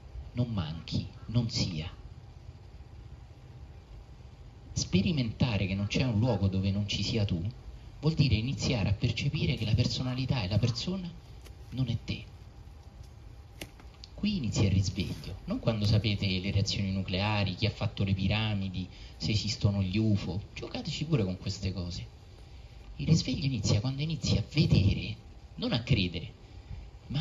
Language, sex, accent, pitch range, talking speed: Italian, male, native, 90-120 Hz, 140 wpm